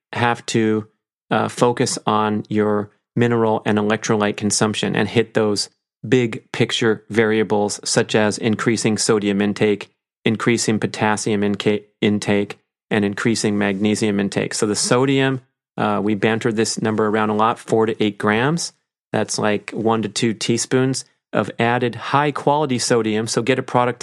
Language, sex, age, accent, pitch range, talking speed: English, male, 30-49, American, 105-120 Hz, 145 wpm